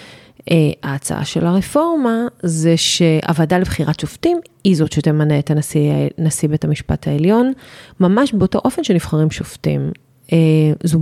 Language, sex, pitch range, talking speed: Hebrew, female, 155-200 Hz, 125 wpm